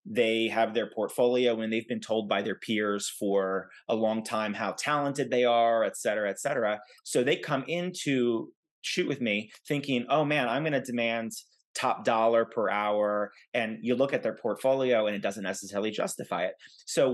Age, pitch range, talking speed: 30-49, 105-125 Hz, 190 wpm